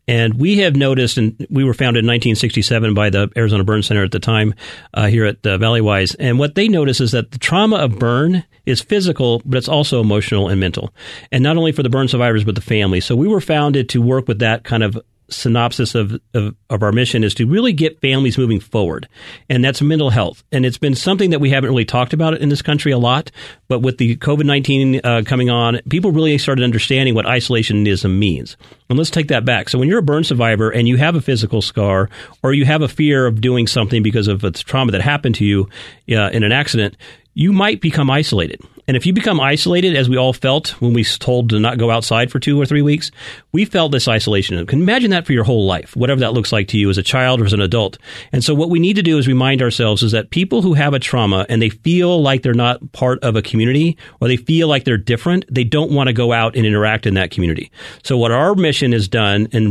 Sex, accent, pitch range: male, American, 110-145 Hz